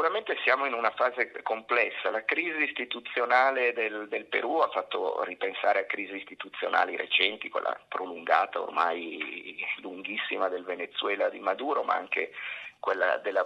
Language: Italian